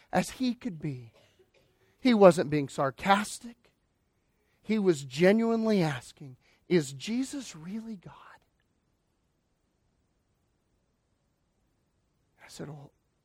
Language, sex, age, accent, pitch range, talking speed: English, male, 40-59, American, 160-230 Hz, 80 wpm